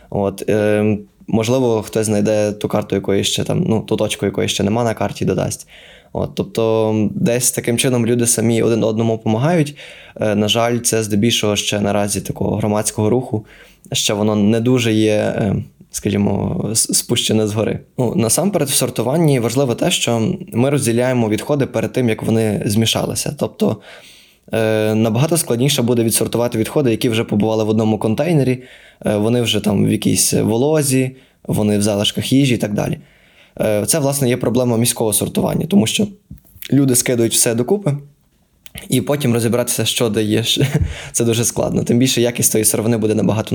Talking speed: 155 wpm